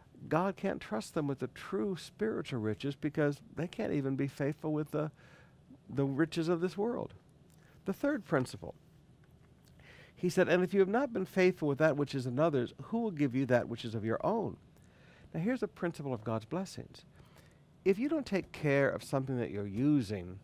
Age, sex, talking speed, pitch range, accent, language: 60-79, male, 195 wpm, 120-160 Hz, American, English